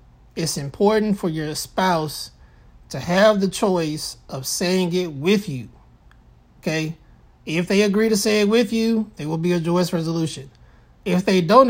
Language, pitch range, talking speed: English, 150-190 Hz, 165 wpm